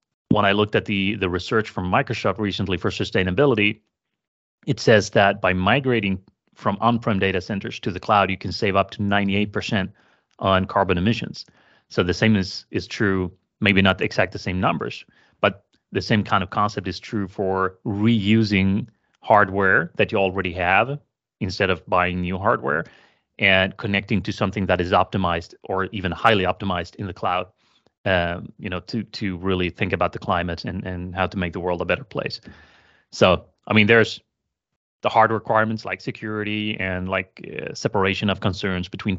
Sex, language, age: male, English, 30-49